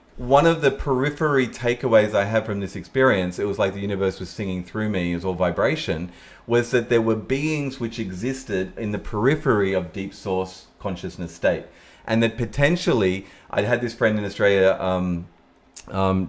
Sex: male